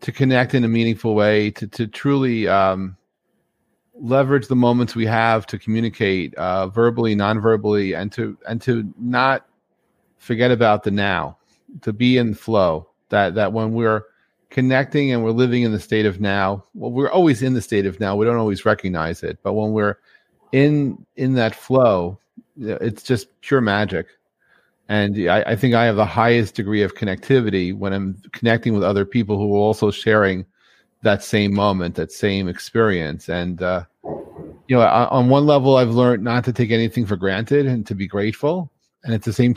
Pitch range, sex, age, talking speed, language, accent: 105-125 Hz, male, 40-59, 185 wpm, English, American